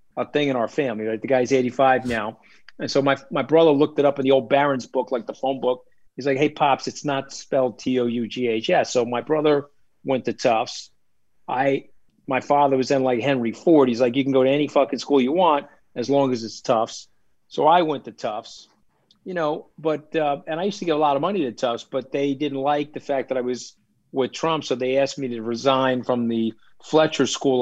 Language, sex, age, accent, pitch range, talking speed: English, male, 40-59, American, 125-145 Hz, 230 wpm